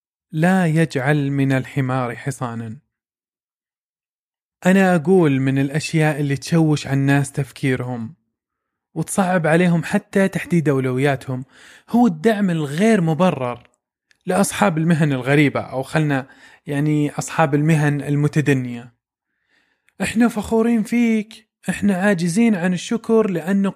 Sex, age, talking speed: male, 20-39, 100 wpm